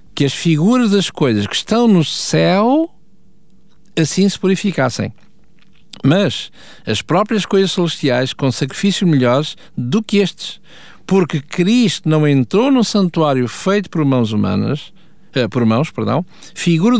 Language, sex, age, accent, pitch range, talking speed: Portuguese, male, 50-69, Portuguese, 145-200 Hz, 135 wpm